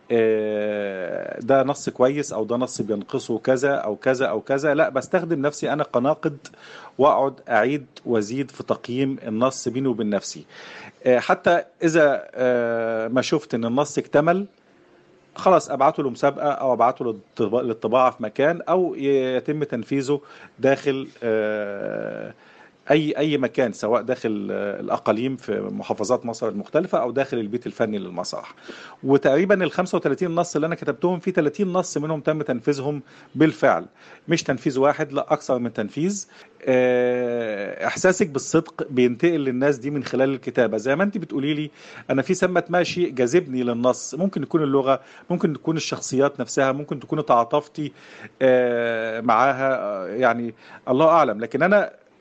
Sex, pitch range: male, 125-155 Hz